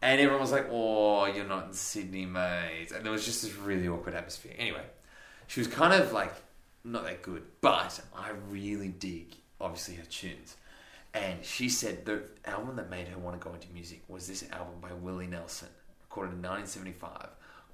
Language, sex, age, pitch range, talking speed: English, male, 20-39, 90-110 Hz, 190 wpm